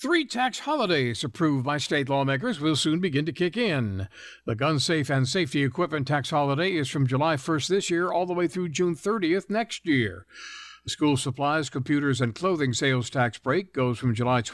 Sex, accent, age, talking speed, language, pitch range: male, American, 60-79, 195 wpm, English, 120-165 Hz